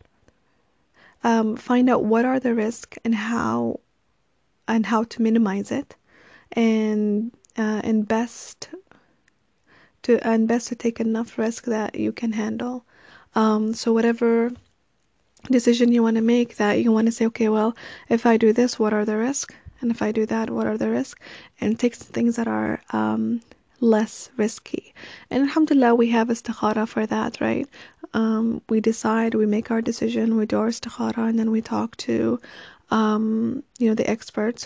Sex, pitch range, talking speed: female, 220-245 Hz, 170 wpm